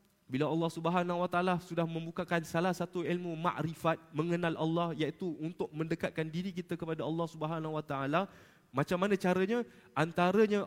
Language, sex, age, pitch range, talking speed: Malay, male, 20-39, 165-205 Hz, 150 wpm